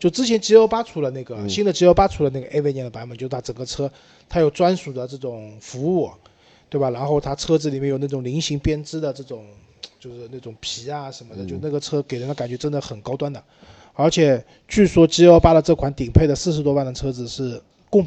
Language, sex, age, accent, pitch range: Chinese, male, 20-39, native, 125-160 Hz